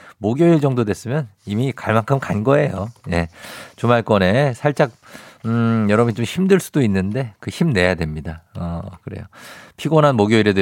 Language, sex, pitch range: Korean, male, 95-135 Hz